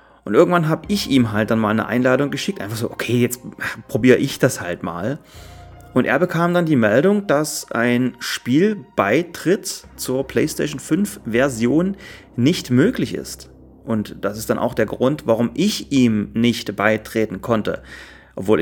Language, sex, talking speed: German, male, 160 wpm